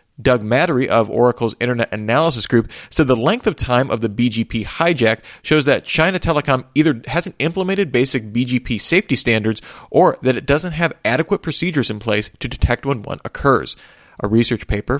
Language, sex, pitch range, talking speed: English, male, 115-155 Hz, 175 wpm